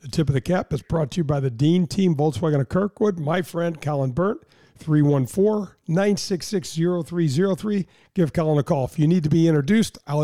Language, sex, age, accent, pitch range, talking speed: English, male, 50-69, American, 135-170 Hz, 190 wpm